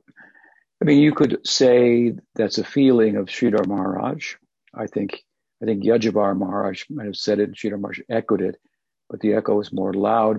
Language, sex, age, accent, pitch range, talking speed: English, male, 60-79, American, 95-115 Hz, 185 wpm